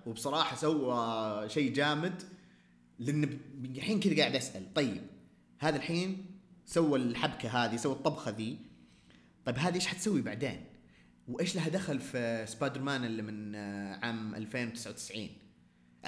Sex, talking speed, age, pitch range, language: male, 125 wpm, 30-49, 105-165 Hz, Arabic